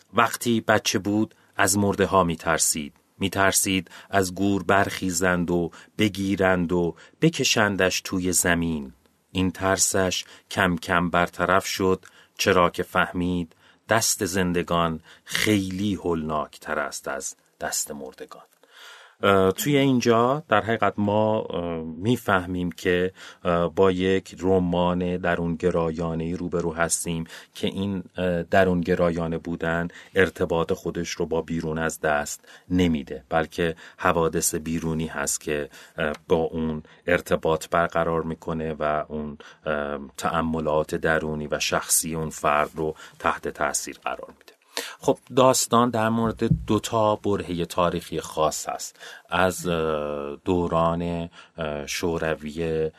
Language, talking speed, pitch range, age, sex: Persian, 110 wpm, 80-95 Hz, 40-59, male